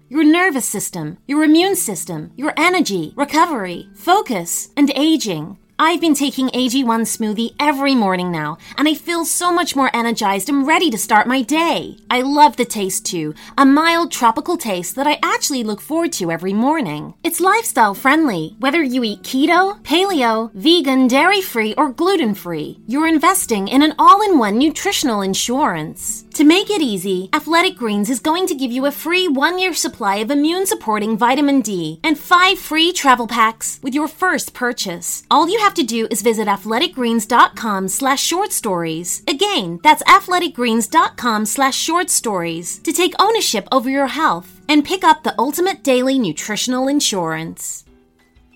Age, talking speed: 30-49, 155 wpm